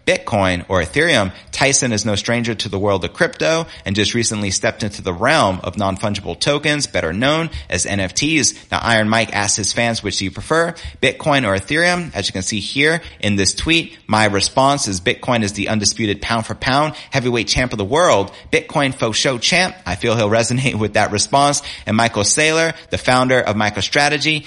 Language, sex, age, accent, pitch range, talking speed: English, male, 30-49, American, 100-130 Hz, 195 wpm